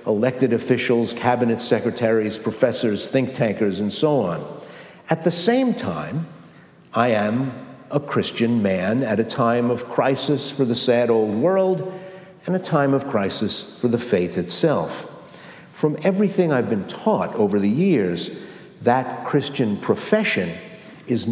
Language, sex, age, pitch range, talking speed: English, male, 50-69, 120-185 Hz, 140 wpm